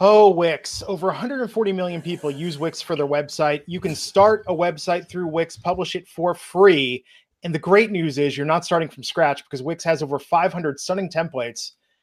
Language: English